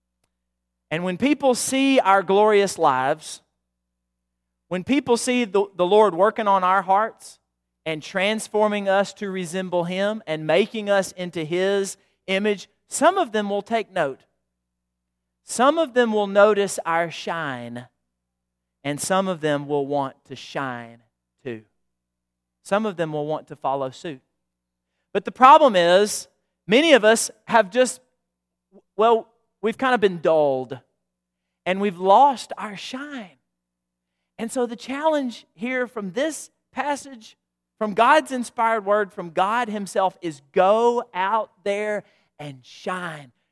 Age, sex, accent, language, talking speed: 40-59, male, American, English, 140 wpm